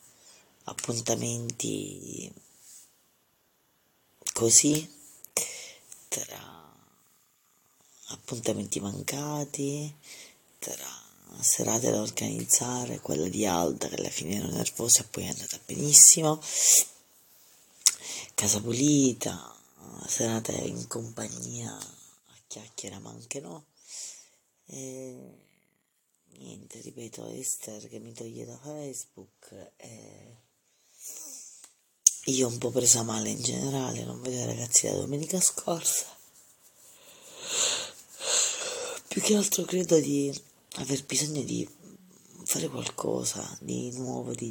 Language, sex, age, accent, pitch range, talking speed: Italian, female, 30-49, native, 110-150 Hz, 95 wpm